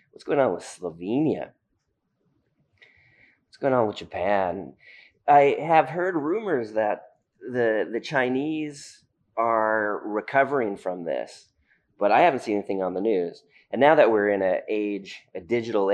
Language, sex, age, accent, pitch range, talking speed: English, male, 30-49, American, 95-120 Hz, 145 wpm